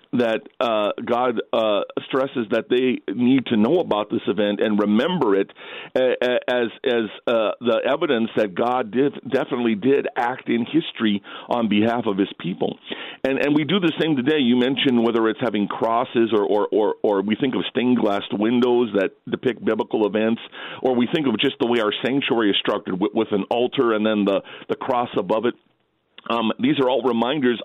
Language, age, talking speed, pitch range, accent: English, 50-69, 190 wpm, 105-135 Hz, American